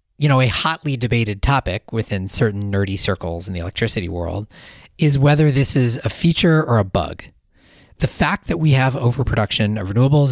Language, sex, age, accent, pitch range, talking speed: English, male, 40-59, American, 105-145 Hz, 180 wpm